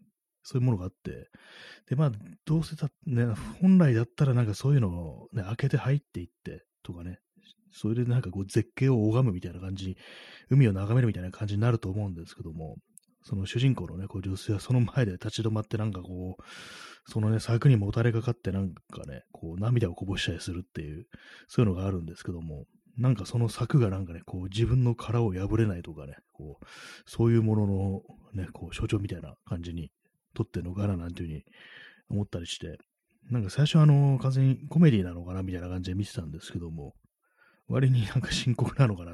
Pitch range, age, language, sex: 90-120 Hz, 30-49, Japanese, male